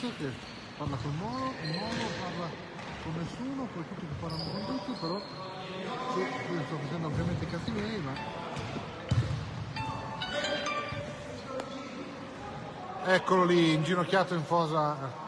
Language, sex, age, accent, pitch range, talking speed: Italian, male, 40-59, native, 160-230 Hz, 120 wpm